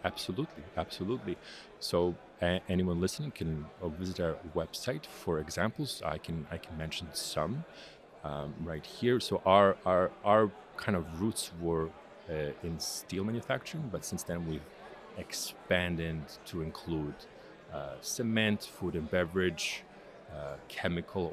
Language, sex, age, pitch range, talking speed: Dutch, male, 40-59, 80-100 Hz, 130 wpm